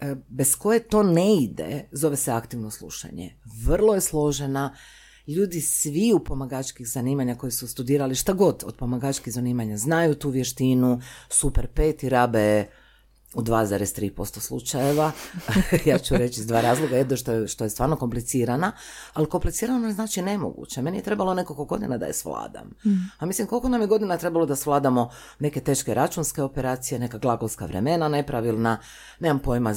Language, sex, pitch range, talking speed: Croatian, female, 120-160 Hz, 160 wpm